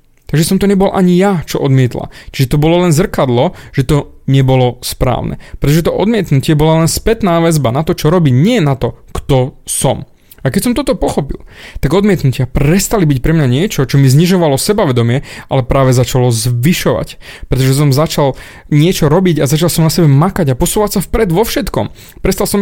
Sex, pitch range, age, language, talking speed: male, 130-175 Hz, 30-49, Slovak, 190 wpm